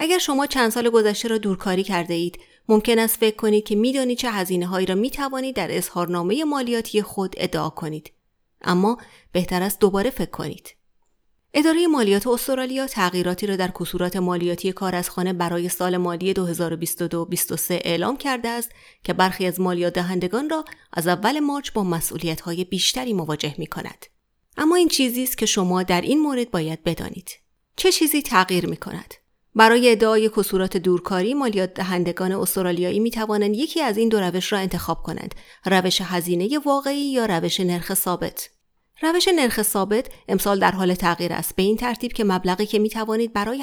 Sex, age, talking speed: female, 30-49, 170 wpm